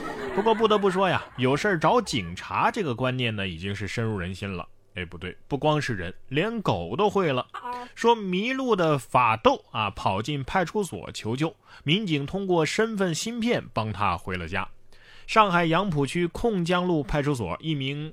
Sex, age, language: male, 20-39, Chinese